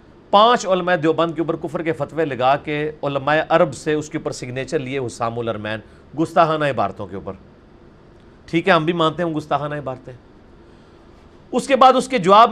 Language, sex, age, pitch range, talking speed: Urdu, male, 40-59, 145-205 Hz, 180 wpm